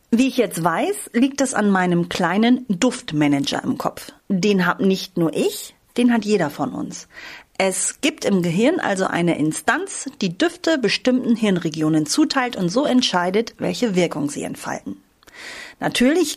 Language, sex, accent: German, female, German